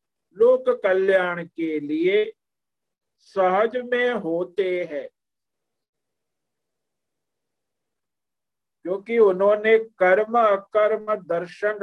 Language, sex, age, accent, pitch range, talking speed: Hindi, male, 50-69, native, 175-220 Hz, 65 wpm